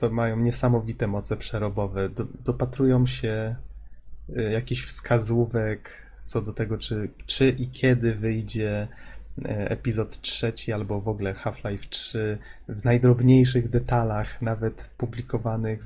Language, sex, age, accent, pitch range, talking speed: Polish, male, 20-39, native, 110-125 Hz, 115 wpm